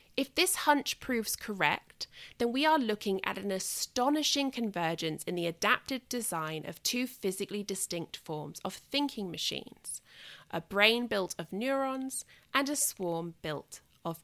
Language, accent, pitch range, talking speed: English, British, 190-265 Hz, 150 wpm